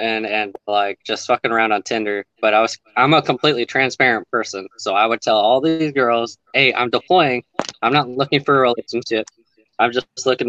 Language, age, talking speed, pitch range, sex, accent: English, 20-39, 200 wpm, 110-135 Hz, male, American